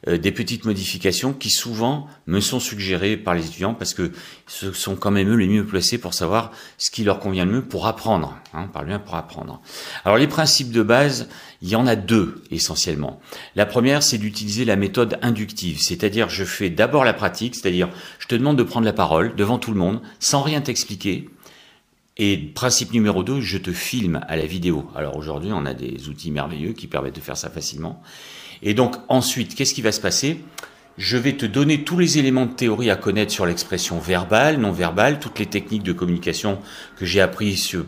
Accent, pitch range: French, 95-135 Hz